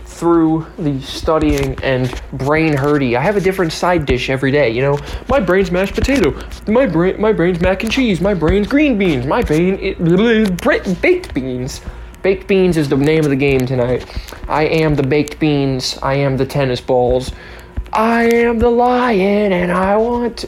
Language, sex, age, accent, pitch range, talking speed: English, male, 20-39, American, 135-190 Hz, 180 wpm